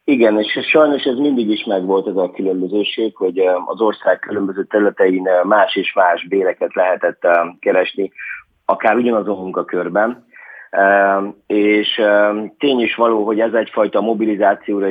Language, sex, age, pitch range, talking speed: Hungarian, male, 30-49, 100-115 Hz, 135 wpm